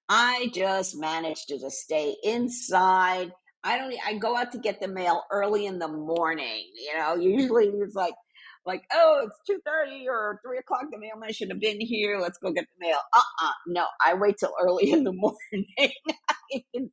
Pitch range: 175-230 Hz